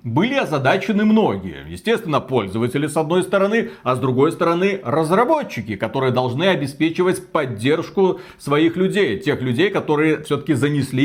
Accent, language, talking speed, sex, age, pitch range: native, Russian, 130 wpm, male, 40-59, 125-180 Hz